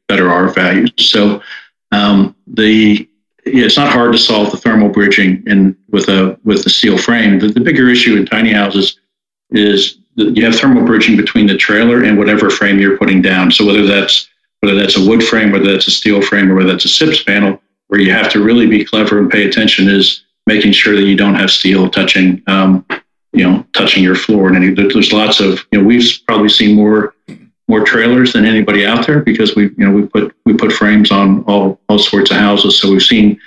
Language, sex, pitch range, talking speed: English, male, 95-105 Hz, 220 wpm